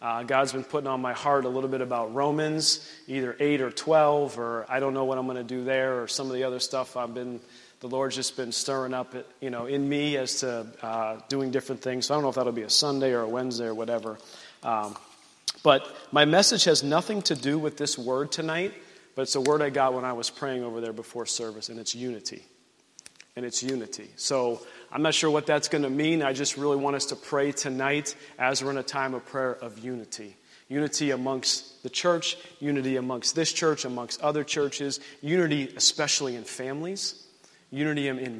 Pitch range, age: 125-145 Hz, 30-49